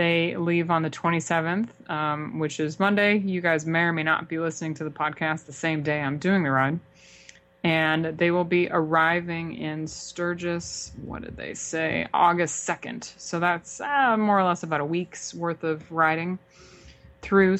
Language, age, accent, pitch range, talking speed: English, 20-39, American, 160-175 Hz, 180 wpm